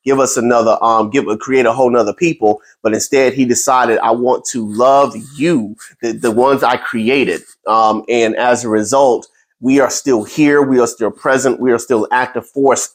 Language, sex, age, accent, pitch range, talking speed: English, male, 30-49, American, 115-140 Hz, 195 wpm